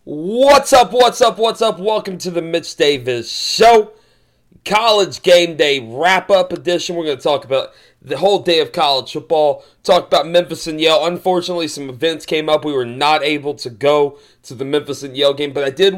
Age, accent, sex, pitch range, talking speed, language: 30-49, American, male, 145-180 Hz, 200 wpm, English